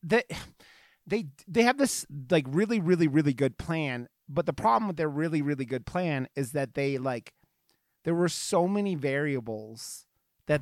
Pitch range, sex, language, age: 135-165 Hz, male, English, 30-49